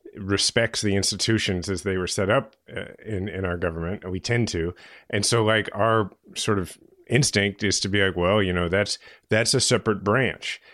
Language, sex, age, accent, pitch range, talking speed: English, male, 30-49, American, 95-115 Hz, 200 wpm